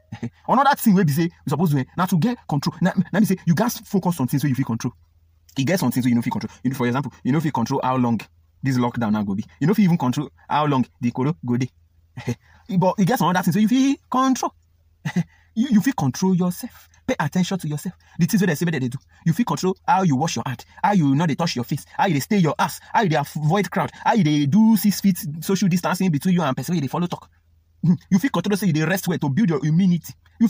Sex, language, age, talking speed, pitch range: male, English, 30-49, 280 wpm, 115-185 Hz